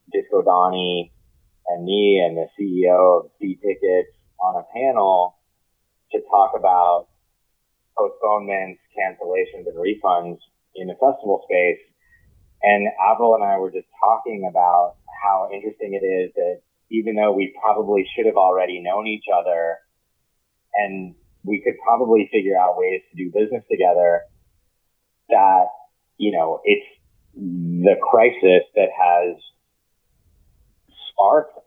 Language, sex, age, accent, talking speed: English, male, 30-49, American, 125 wpm